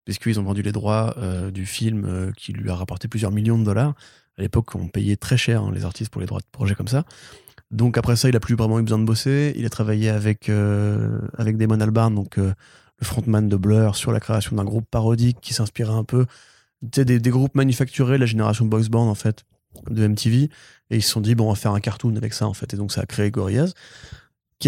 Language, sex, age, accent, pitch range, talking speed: French, male, 20-39, French, 105-120 Hz, 250 wpm